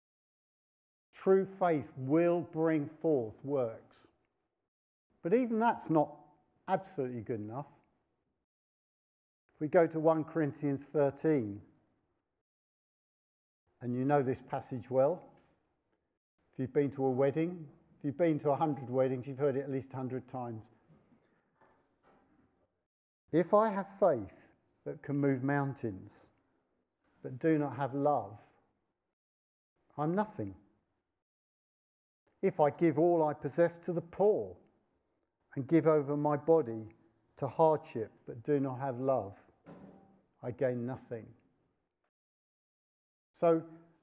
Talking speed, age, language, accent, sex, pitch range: 120 wpm, 50-69, English, British, male, 125-165 Hz